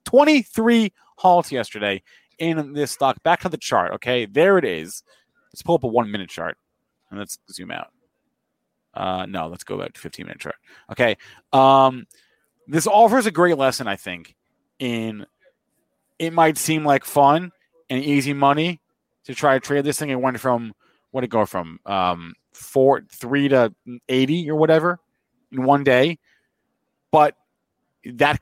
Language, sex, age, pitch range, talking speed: English, male, 30-49, 120-150 Hz, 160 wpm